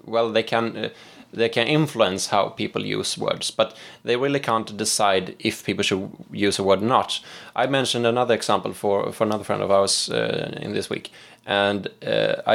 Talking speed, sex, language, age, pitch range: 190 wpm, male, English, 20-39, 105-140 Hz